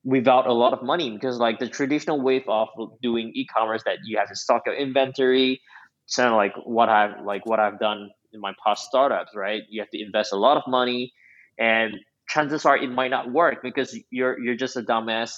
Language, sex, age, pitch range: English, male, 20-39, 115-135 Hz